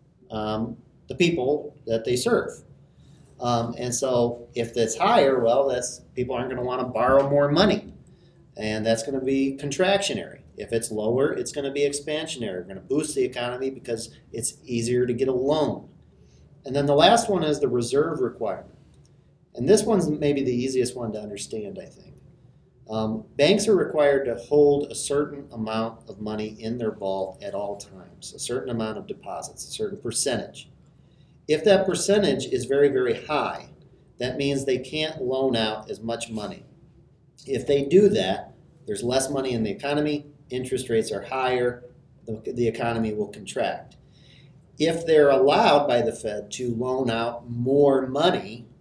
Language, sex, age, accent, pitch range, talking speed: English, male, 40-59, American, 115-145 Hz, 170 wpm